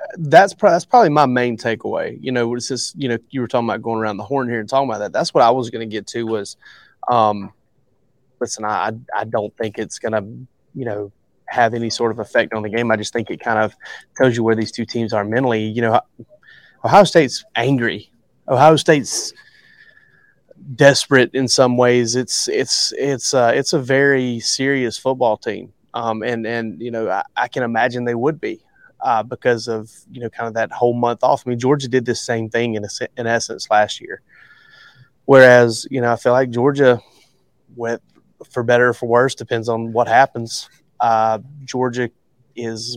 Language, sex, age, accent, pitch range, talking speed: English, male, 30-49, American, 115-130 Hz, 205 wpm